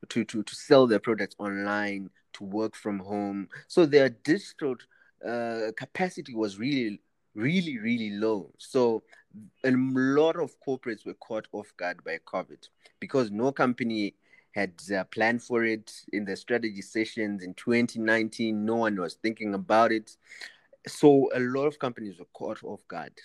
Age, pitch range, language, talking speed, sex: 30-49, 100-135 Hz, English, 155 wpm, male